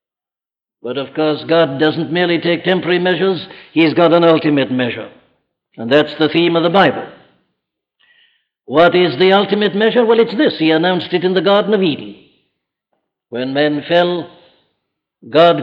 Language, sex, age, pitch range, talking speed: English, male, 60-79, 155-200 Hz, 155 wpm